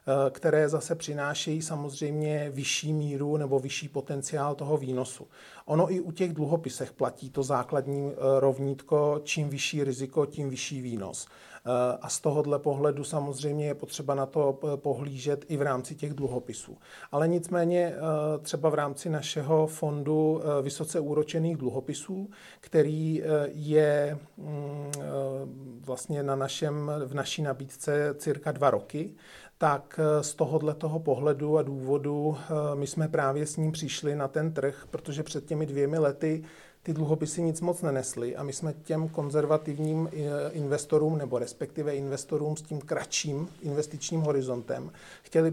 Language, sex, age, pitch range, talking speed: Czech, male, 40-59, 140-155 Hz, 135 wpm